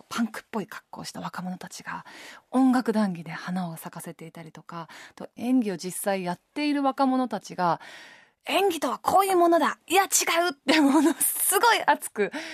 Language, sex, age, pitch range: Japanese, female, 20-39, 195-295 Hz